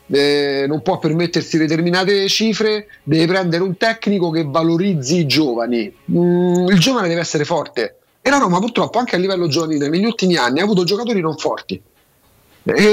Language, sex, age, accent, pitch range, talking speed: Italian, male, 40-59, native, 140-190 Hz, 170 wpm